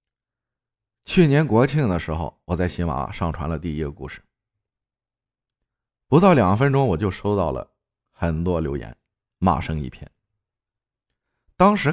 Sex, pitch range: male, 80-120 Hz